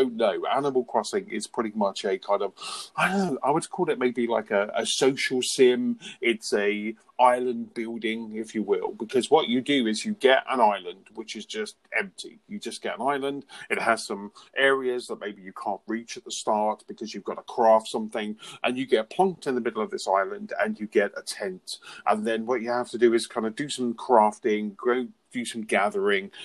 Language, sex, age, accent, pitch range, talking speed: English, male, 40-59, British, 105-140 Hz, 220 wpm